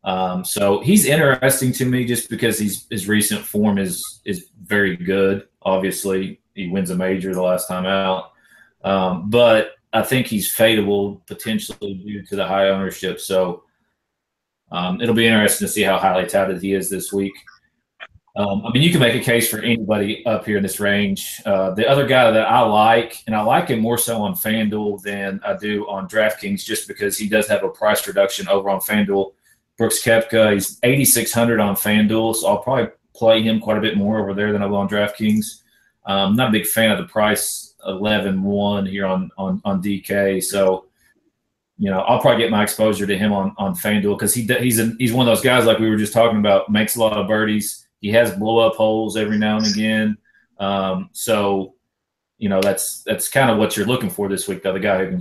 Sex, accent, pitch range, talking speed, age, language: male, American, 100-115 Hz, 215 wpm, 30-49, English